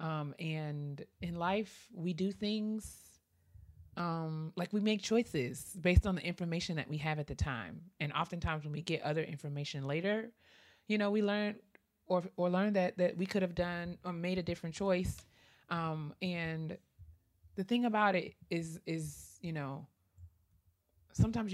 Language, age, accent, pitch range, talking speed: English, 20-39, American, 140-185 Hz, 165 wpm